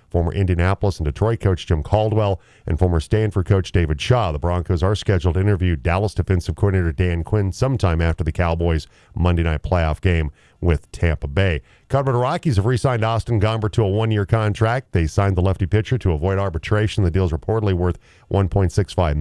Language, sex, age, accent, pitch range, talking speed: English, male, 40-59, American, 90-110 Hz, 185 wpm